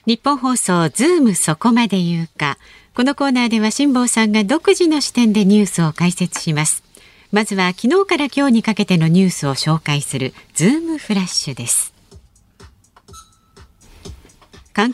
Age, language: 40-59, Japanese